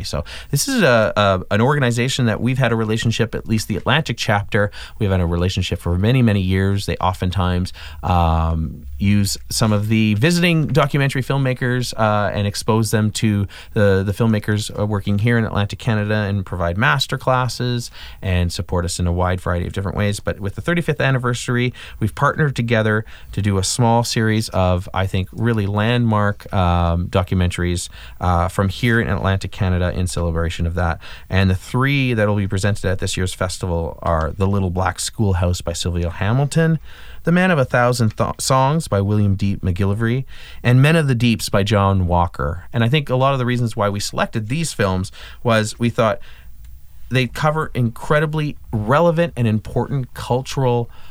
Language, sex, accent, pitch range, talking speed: English, male, American, 90-120 Hz, 180 wpm